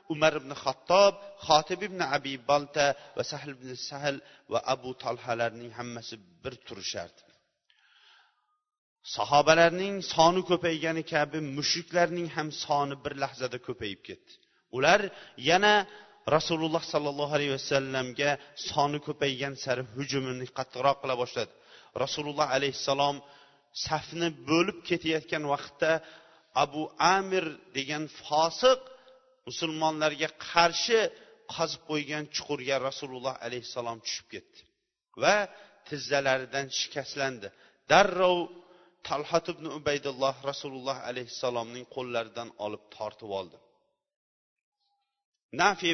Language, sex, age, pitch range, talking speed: Russian, male, 40-59, 135-180 Hz, 100 wpm